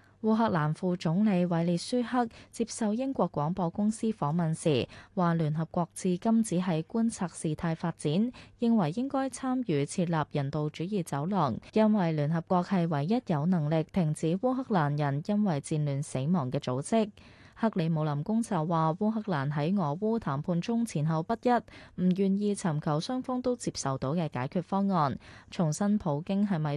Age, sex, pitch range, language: 20-39, female, 150-205 Hz, Chinese